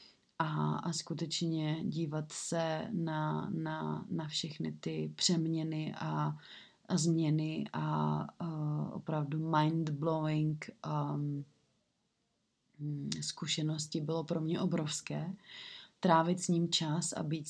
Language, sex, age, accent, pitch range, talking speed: Czech, female, 30-49, native, 150-165 Hz, 105 wpm